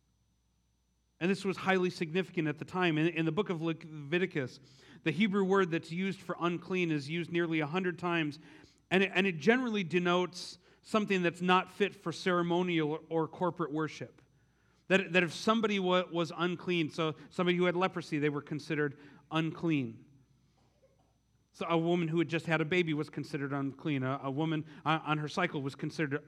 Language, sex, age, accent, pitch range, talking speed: English, male, 40-59, American, 150-180 Hz, 180 wpm